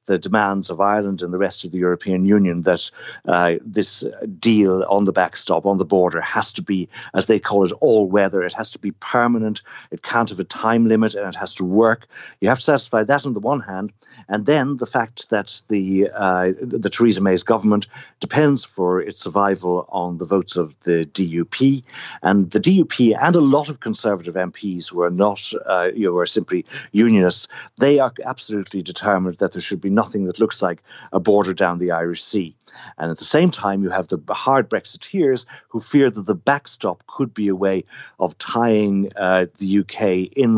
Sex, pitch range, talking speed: male, 95-115 Hz, 205 wpm